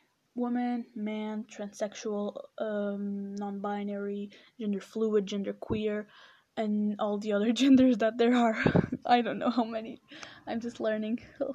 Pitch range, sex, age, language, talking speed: 205-240 Hz, female, 10-29, English, 135 wpm